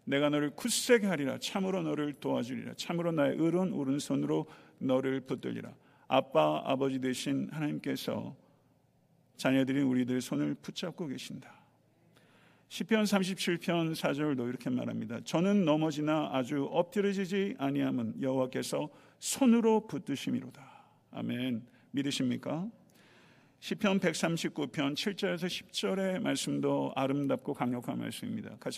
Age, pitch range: 50-69, 135-190 Hz